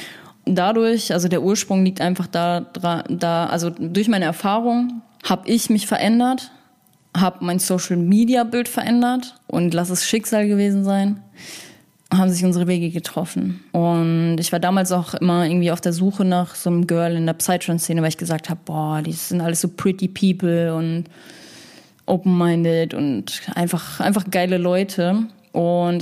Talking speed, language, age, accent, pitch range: 155 wpm, German, 20-39, German, 170-205 Hz